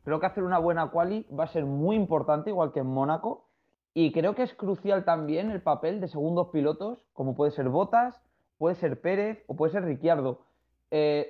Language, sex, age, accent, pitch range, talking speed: Spanish, male, 20-39, Spanish, 150-200 Hz, 200 wpm